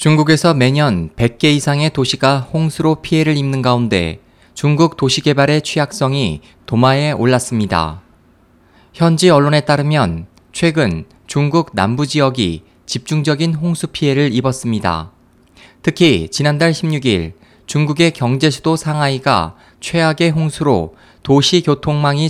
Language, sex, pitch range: Korean, male, 120-160 Hz